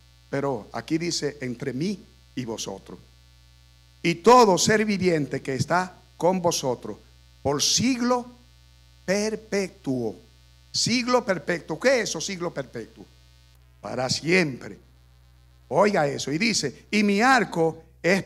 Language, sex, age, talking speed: Spanish, male, 60-79, 115 wpm